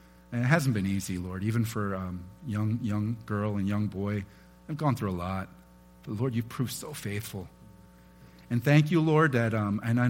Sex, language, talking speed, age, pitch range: male, English, 210 wpm, 40-59, 100-125 Hz